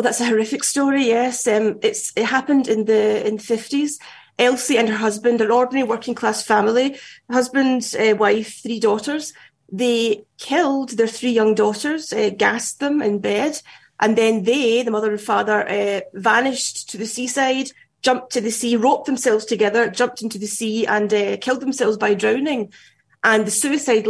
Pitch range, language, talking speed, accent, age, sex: 215-255 Hz, English, 175 wpm, British, 30-49, female